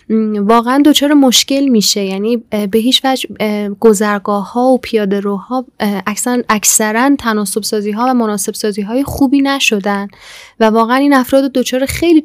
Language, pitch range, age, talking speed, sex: Persian, 210-255 Hz, 10-29, 140 wpm, female